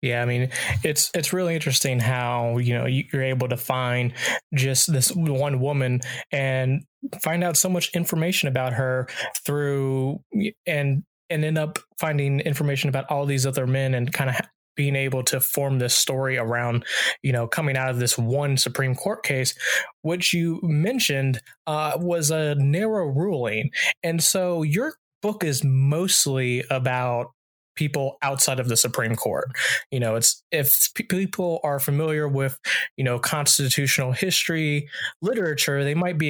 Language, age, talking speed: English, 20-39, 155 wpm